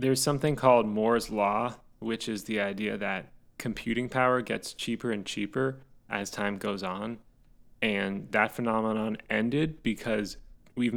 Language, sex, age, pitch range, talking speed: English, male, 20-39, 105-125 Hz, 140 wpm